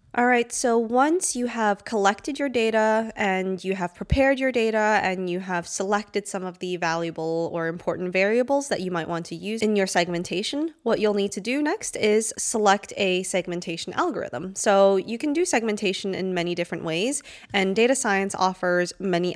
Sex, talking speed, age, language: female, 185 wpm, 20-39, English